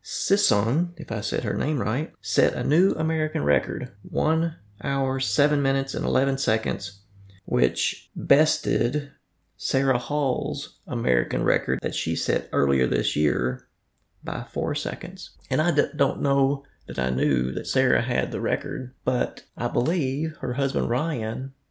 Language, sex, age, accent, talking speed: English, male, 30-49, American, 145 wpm